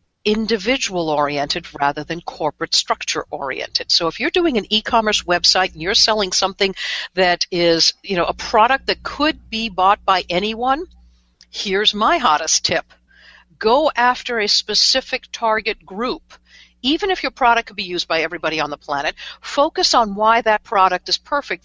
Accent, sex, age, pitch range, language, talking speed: American, female, 60-79, 170-235 Hz, English, 165 wpm